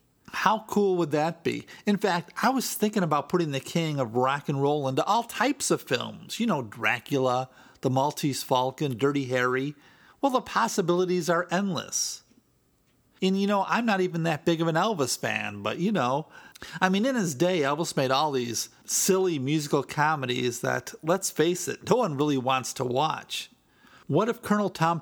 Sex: male